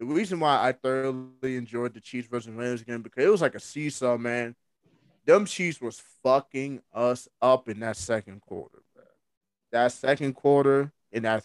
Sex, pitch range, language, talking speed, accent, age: male, 115-155 Hz, English, 180 wpm, American, 20-39